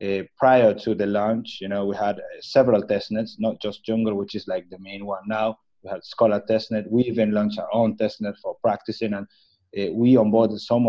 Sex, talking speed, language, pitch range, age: male, 215 wpm, English, 105-125 Hz, 30-49